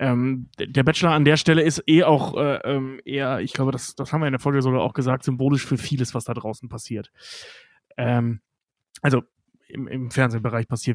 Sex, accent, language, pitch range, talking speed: male, German, German, 130-155 Hz, 195 wpm